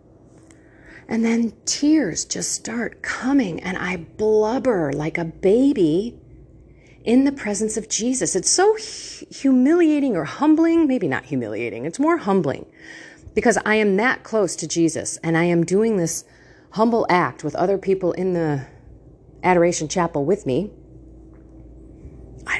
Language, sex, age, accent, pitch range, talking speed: English, female, 40-59, American, 165-235 Hz, 140 wpm